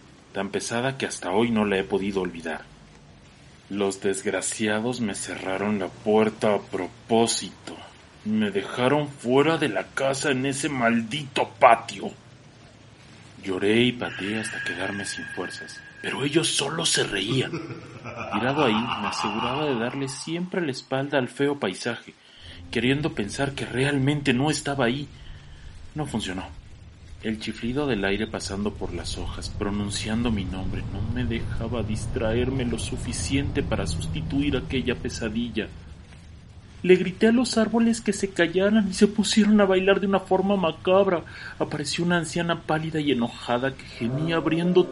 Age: 40-59